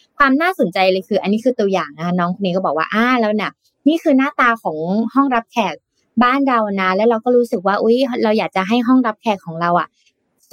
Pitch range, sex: 180-240 Hz, female